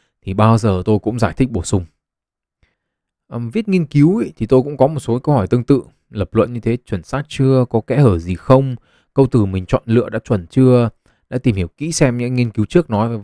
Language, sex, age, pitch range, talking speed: Vietnamese, male, 20-39, 105-145 Hz, 245 wpm